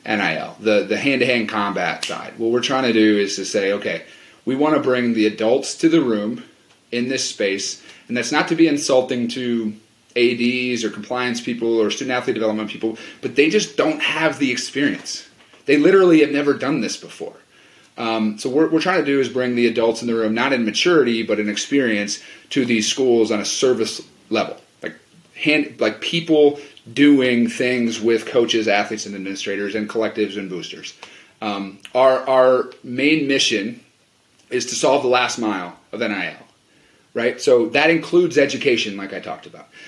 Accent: American